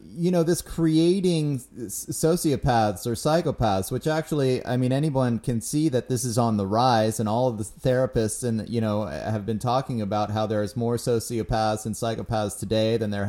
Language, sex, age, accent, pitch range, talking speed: English, male, 30-49, American, 115-150 Hz, 190 wpm